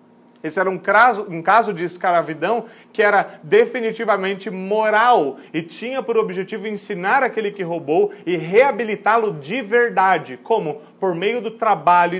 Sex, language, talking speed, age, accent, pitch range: male, Portuguese, 135 wpm, 30-49, Brazilian, 160-210 Hz